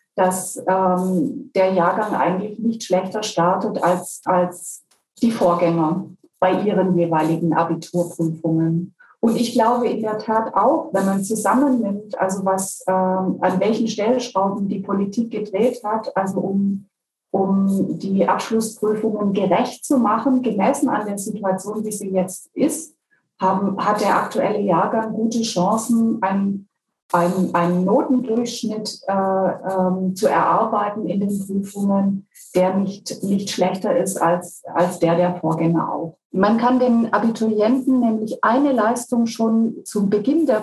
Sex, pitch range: female, 185-225 Hz